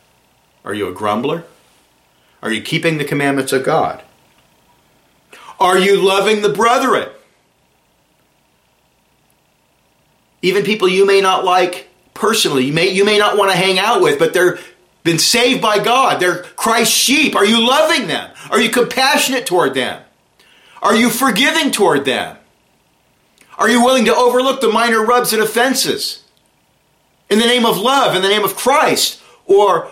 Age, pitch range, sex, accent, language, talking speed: 40-59, 180-245 Hz, male, American, English, 150 wpm